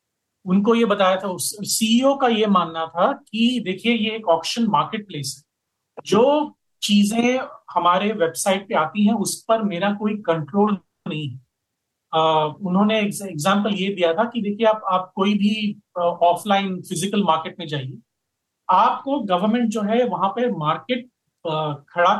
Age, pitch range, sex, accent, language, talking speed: 40-59, 165-215 Hz, male, native, Hindi, 155 wpm